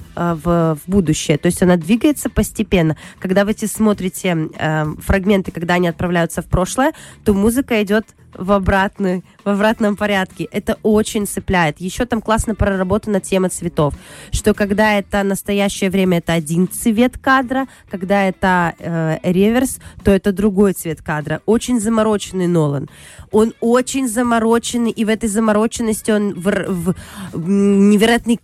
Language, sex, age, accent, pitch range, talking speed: Russian, female, 20-39, native, 180-220 Hz, 145 wpm